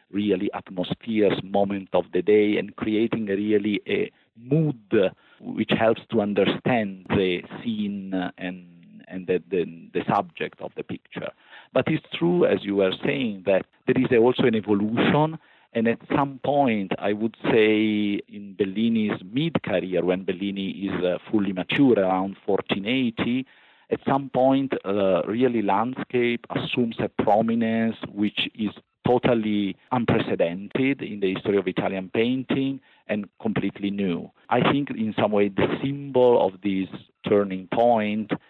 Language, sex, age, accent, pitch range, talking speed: English, male, 50-69, Italian, 95-115 Hz, 140 wpm